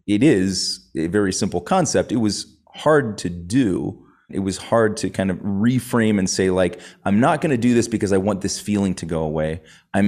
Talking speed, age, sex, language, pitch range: 215 wpm, 30-49, male, English, 90-115 Hz